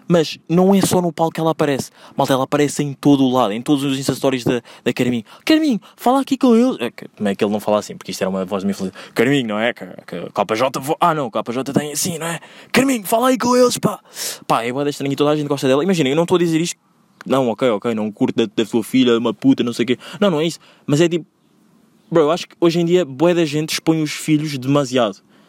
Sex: male